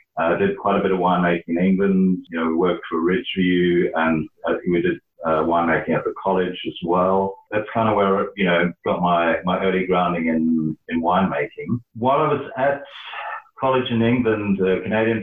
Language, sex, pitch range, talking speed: English, male, 85-110 Hz, 200 wpm